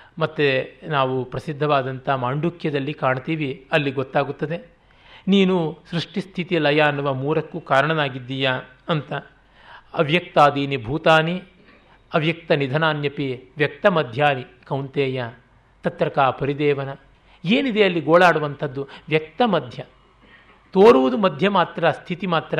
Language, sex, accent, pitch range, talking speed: Kannada, male, native, 135-165 Hz, 90 wpm